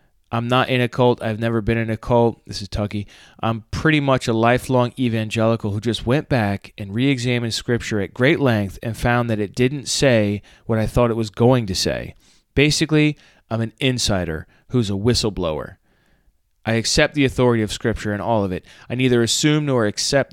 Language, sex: English, male